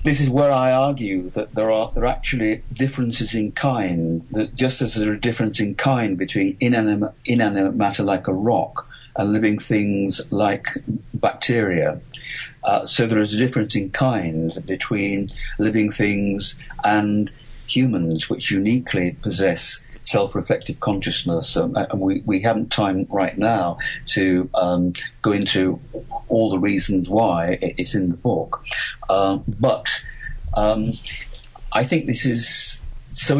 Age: 50-69